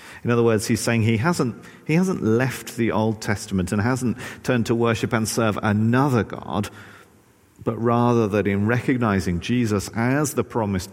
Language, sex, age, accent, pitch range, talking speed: English, male, 40-59, British, 90-115 Hz, 170 wpm